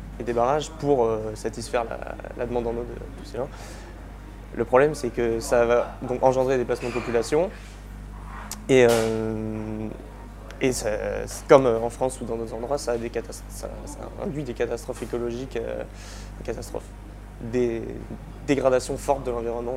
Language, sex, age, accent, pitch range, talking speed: French, male, 20-39, French, 110-130 Hz, 170 wpm